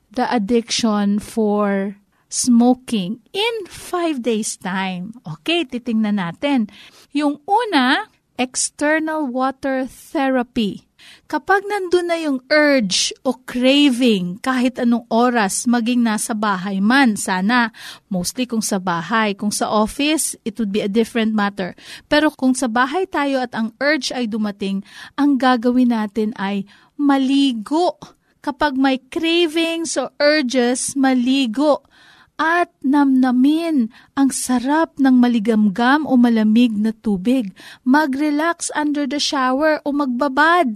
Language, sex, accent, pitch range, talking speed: Filipino, female, native, 225-295 Hz, 120 wpm